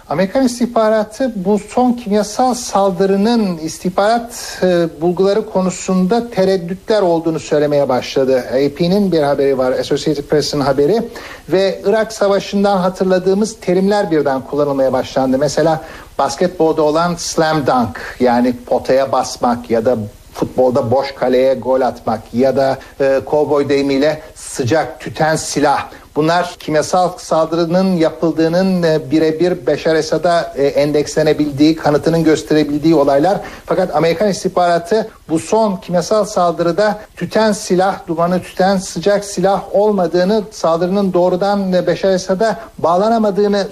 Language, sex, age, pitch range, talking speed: Turkish, male, 60-79, 150-195 Hz, 115 wpm